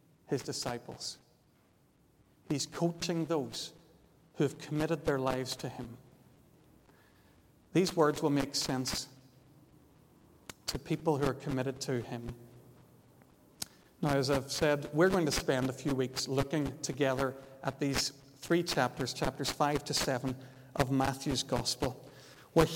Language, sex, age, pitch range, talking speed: English, male, 50-69, 135-160 Hz, 130 wpm